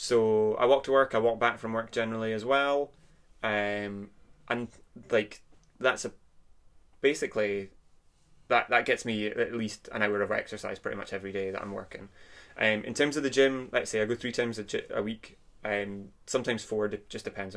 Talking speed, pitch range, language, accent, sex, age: 200 wpm, 100-110 Hz, English, British, male, 20-39